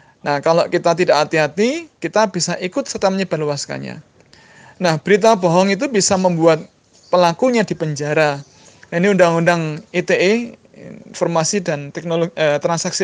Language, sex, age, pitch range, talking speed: Indonesian, male, 20-39, 155-205 Hz, 125 wpm